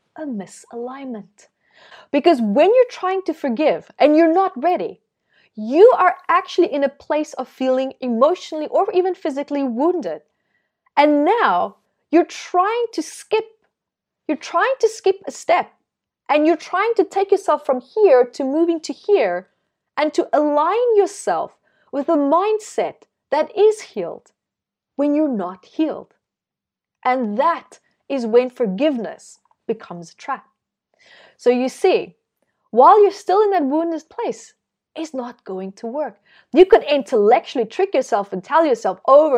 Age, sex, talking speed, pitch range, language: 30-49, female, 145 wpm, 255-365 Hz, English